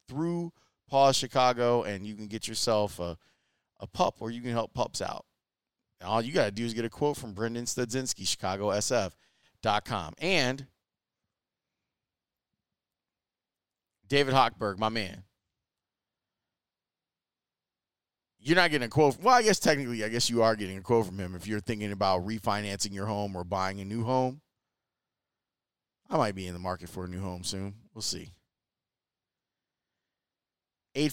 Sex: male